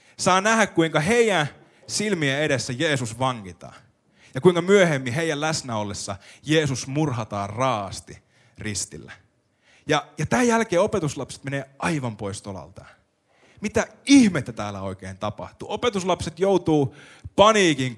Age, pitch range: 30-49, 125-185 Hz